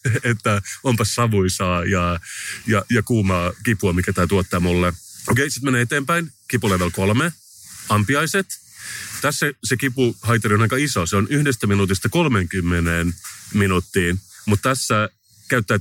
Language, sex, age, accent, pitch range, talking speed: Finnish, male, 30-49, native, 95-125 Hz, 135 wpm